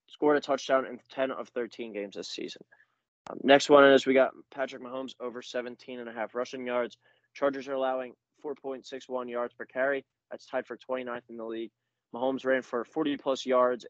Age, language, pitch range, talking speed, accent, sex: 20-39, English, 120-130 Hz, 175 wpm, American, male